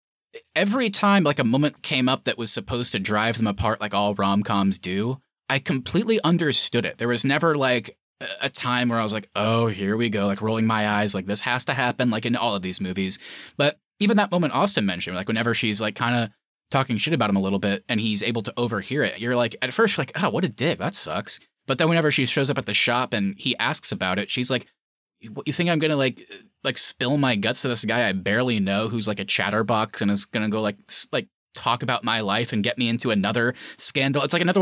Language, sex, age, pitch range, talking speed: English, male, 20-39, 105-140 Hz, 250 wpm